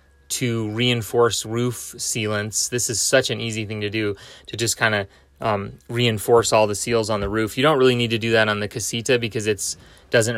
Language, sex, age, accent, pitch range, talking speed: English, male, 20-39, American, 110-125 Hz, 210 wpm